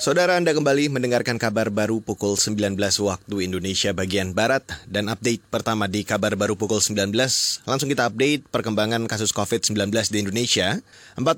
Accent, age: native, 30-49